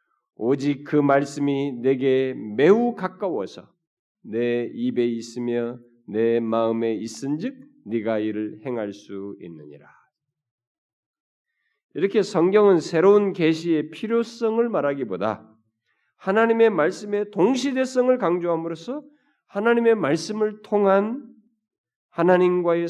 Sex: male